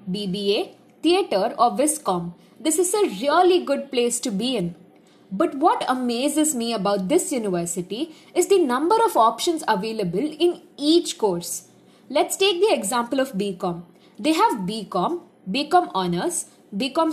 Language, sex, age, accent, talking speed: English, female, 20-39, Indian, 145 wpm